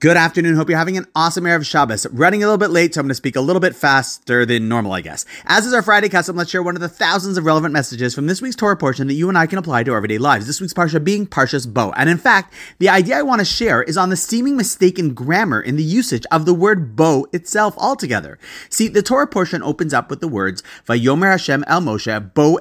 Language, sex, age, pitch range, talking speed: English, male, 30-49, 130-200 Hz, 270 wpm